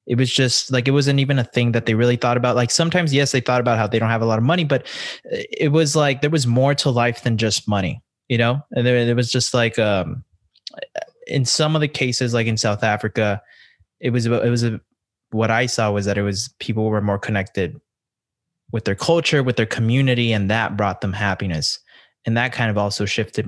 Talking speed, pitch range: 235 wpm, 110-145 Hz